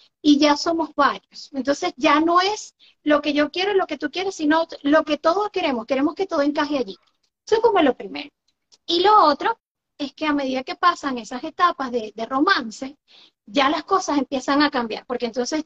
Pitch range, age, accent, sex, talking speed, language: 270-350 Hz, 30-49, American, female, 205 wpm, Spanish